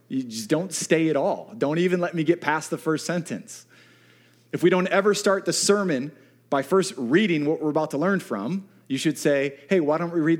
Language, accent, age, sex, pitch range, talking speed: English, American, 30-49, male, 125-190 Hz, 225 wpm